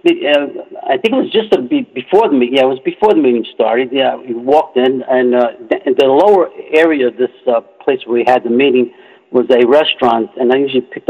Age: 60-79